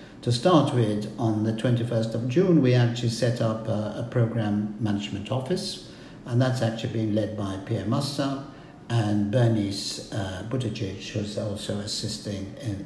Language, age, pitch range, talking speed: English, 60-79, 110-135 Hz, 155 wpm